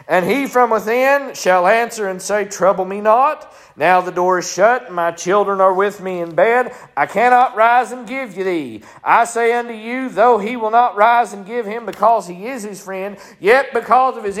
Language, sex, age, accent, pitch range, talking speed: English, male, 40-59, American, 225-255 Hz, 210 wpm